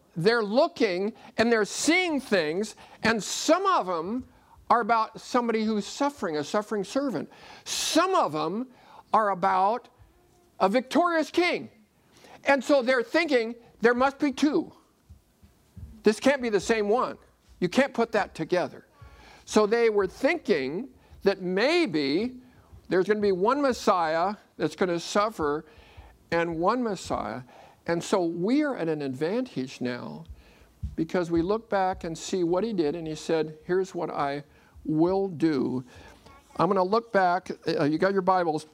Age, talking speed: 50-69, 150 wpm